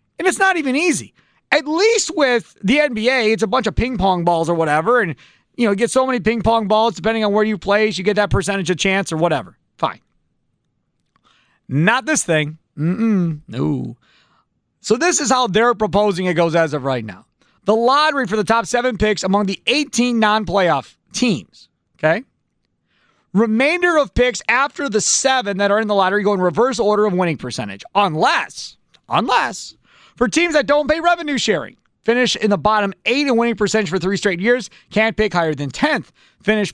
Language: English